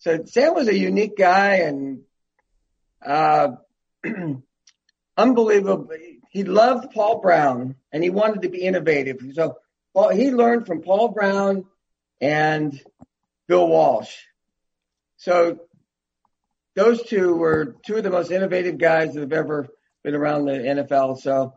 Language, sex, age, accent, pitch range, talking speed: English, male, 50-69, American, 150-190 Hz, 130 wpm